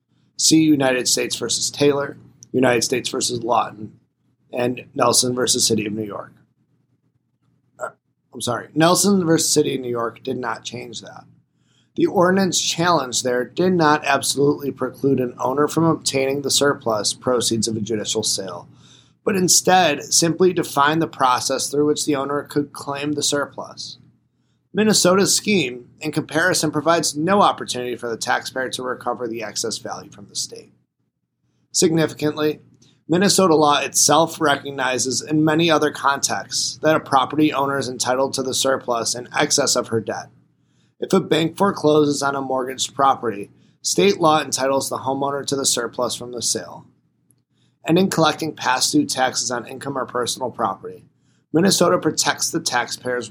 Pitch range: 125-155 Hz